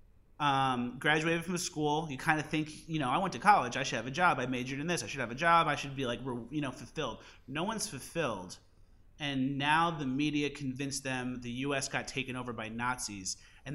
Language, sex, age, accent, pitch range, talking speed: English, male, 30-49, American, 115-145 Hz, 230 wpm